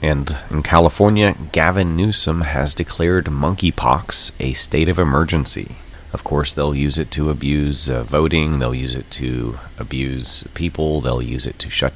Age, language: 30-49, English